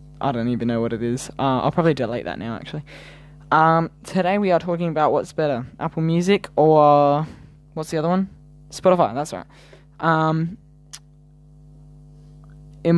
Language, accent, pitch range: English, Australian, 145-155 Hz